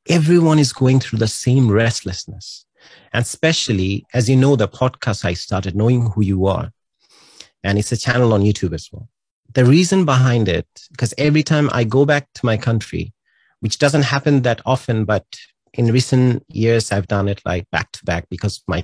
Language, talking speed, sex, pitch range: English, 190 wpm, male, 110-135 Hz